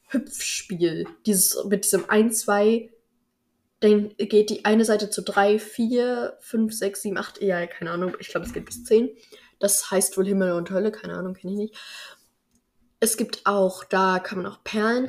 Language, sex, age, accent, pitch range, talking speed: German, female, 10-29, German, 190-235 Hz, 185 wpm